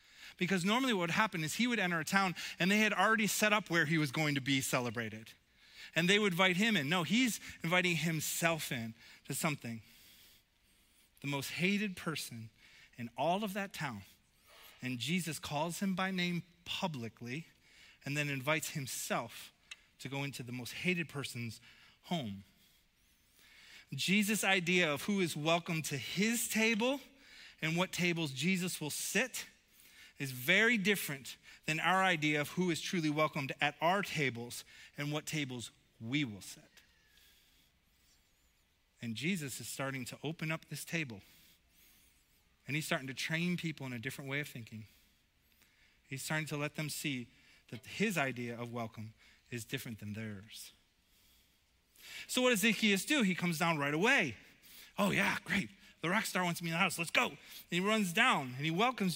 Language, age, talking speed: English, 30-49, 170 wpm